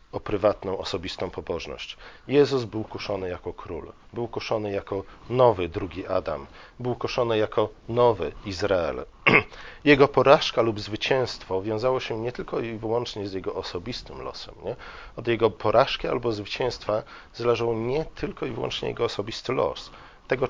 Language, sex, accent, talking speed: Polish, male, native, 145 wpm